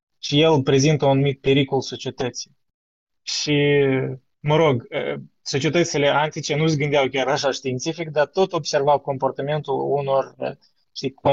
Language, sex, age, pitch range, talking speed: Romanian, male, 20-39, 130-150 Hz, 125 wpm